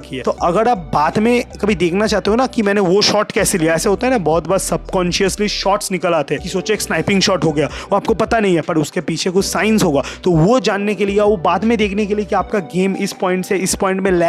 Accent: native